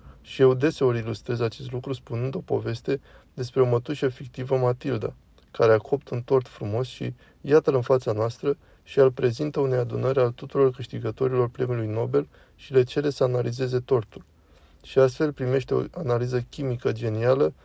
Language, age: Romanian, 20-39